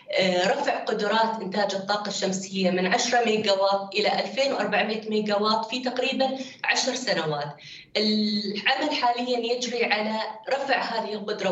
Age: 20-39